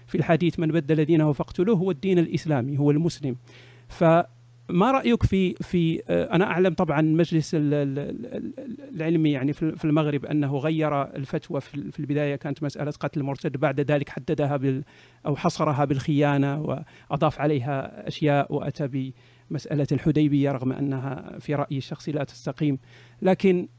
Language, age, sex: Arabic, 50-69, male